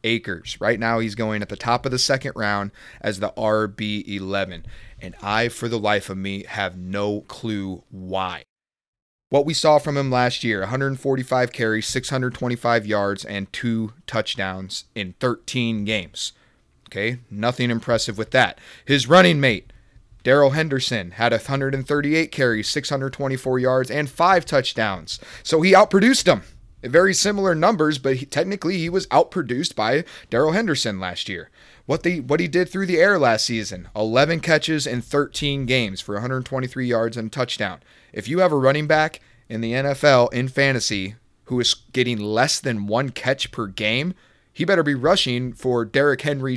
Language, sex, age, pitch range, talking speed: English, male, 30-49, 110-140 Hz, 160 wpm